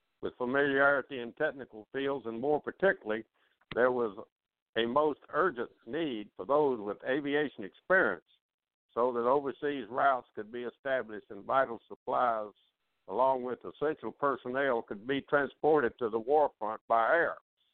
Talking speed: 140 wpm